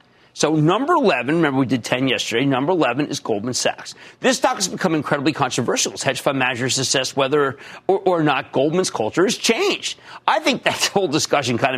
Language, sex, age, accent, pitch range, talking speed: English, male, 40-59, American, 125-185 Hz, 195 wpm